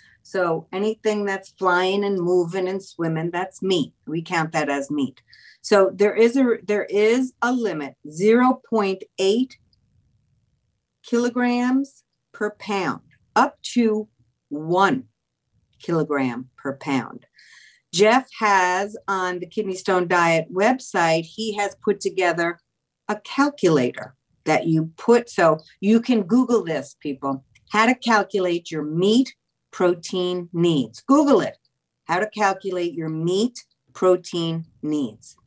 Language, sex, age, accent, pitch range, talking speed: English, female, 50-69, American, 160-225 Hz, 120 wpm